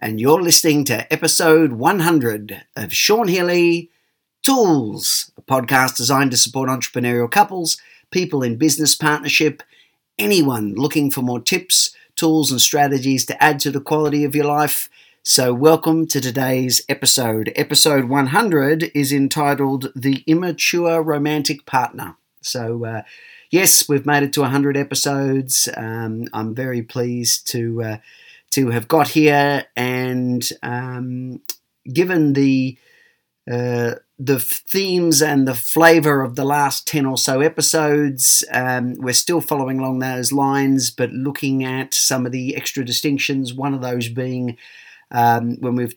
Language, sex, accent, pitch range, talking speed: English, male, Australian, 125-150 Hz, 140 wpm